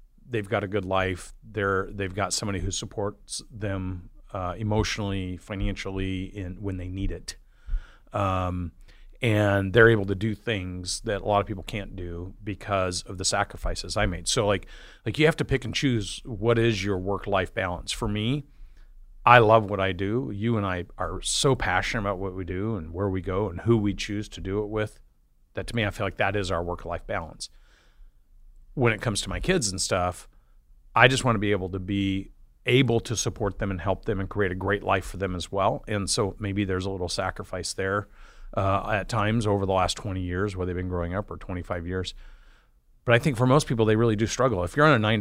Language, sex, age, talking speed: English, male, 40-59, 220 wpm